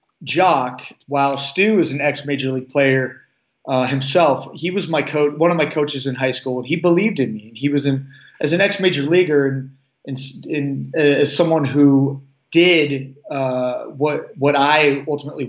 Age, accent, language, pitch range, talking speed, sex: 30-49, American, English, 130-150 Hz, 180 wpm, male